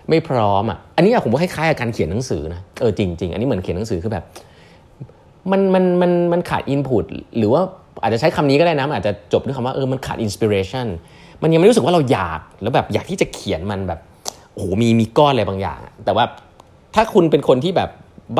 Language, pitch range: Thai, 90-125 Hz